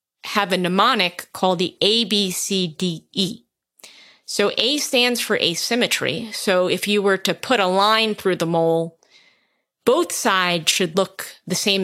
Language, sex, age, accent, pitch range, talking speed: English, female, 30-49, American, 180-230 Hz, 140 wpm